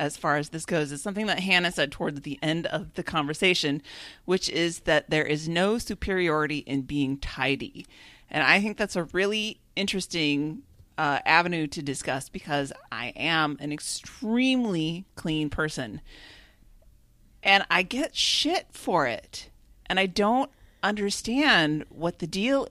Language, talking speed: English, 150 wpm